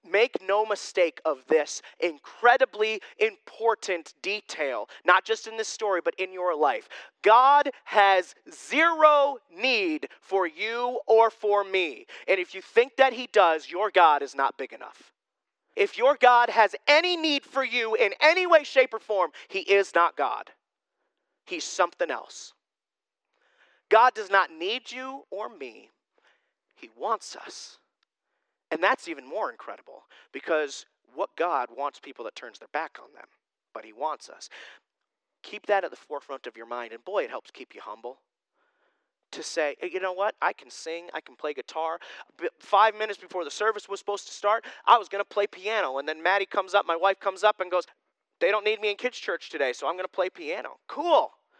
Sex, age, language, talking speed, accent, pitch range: male, 30-49, English, 185 wpm, American, 190-305 Hz